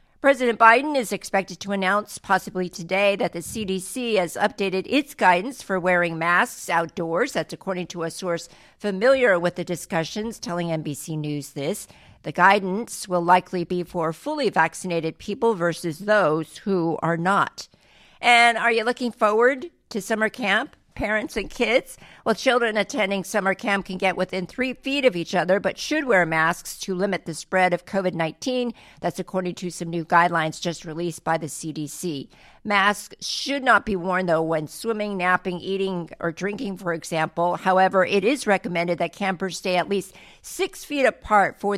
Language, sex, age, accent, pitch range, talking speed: English, female, 50-69, American, 170-210 Hz, 170 wpm